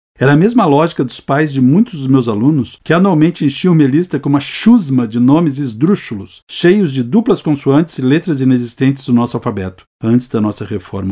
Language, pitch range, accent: Portuguese, 110-145 Hz, Brazilian